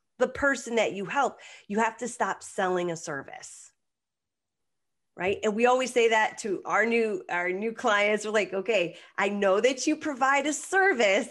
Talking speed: 175 wpm